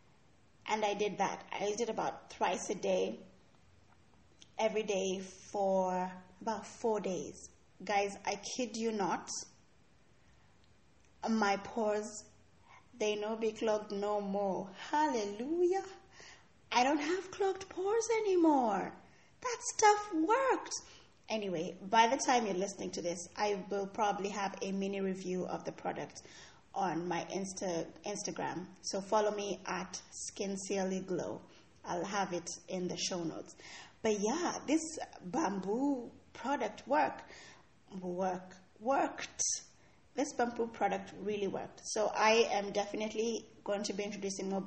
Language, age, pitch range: English, 20-39, 190-230 Hz